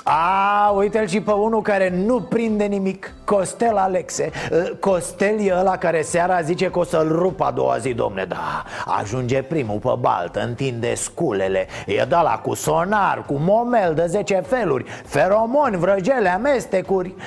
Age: 30-49